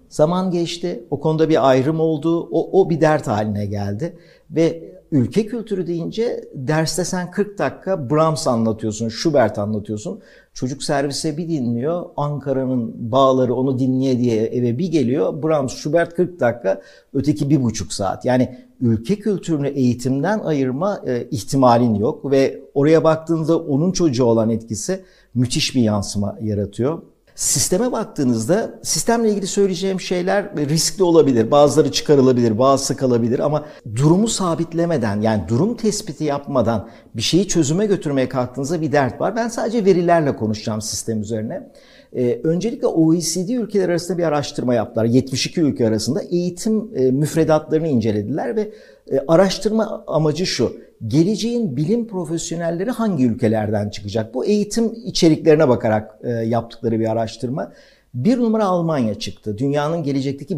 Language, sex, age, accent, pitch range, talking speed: Turkish, male, 60-79, native, 120-180 Hz, 130 wpm